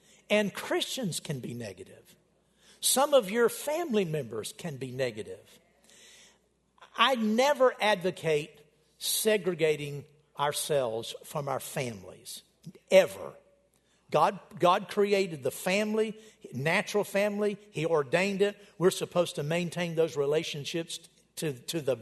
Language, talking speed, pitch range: English, 110 wpm, 160-215 Hz